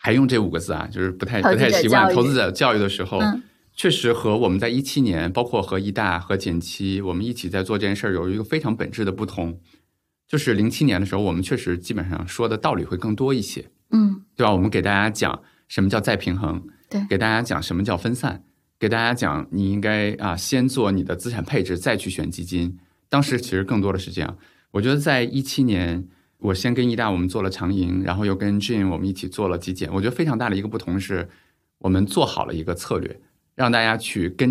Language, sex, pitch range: Chinese, male, 95-125 Hz